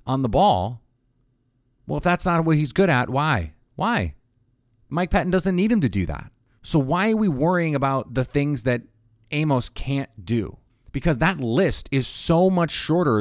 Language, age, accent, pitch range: English, 30-49, American, 110-145 Hz